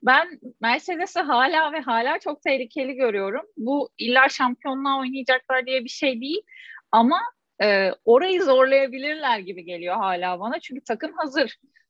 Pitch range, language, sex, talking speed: 215-290 Hz, Turkish, female, 135 wpm